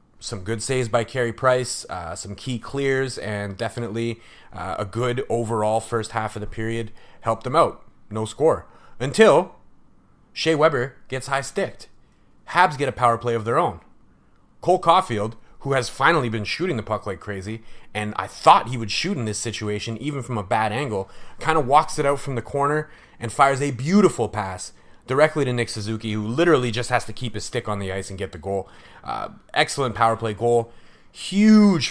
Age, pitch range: 30-49, 110-135 Hz